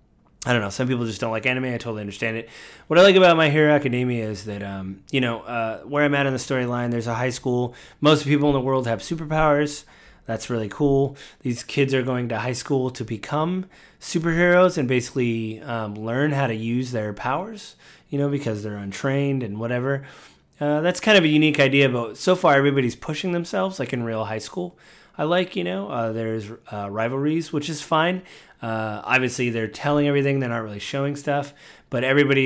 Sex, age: male, 30-49